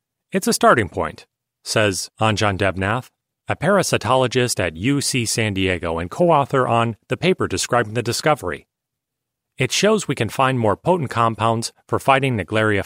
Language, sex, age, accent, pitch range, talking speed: English, male, 40-59, American, 110-140 Hz, 150 wpm